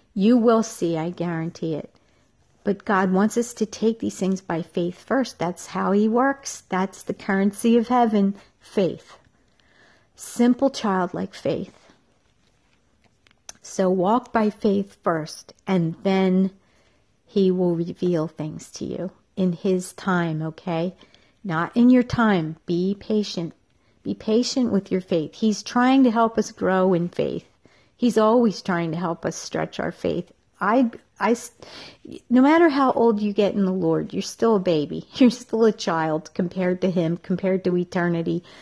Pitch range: 175-225 Hz